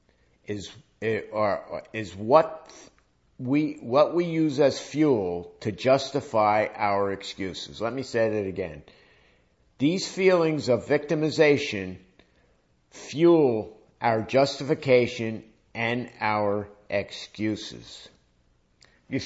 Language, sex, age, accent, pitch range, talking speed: English, male, 50-69, American, 85-140 Hz, 95 wpm